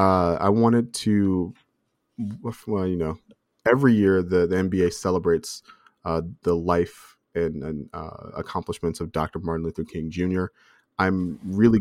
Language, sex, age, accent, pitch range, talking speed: English, male, 30-49, American, 85-110 Hz, 140 wpm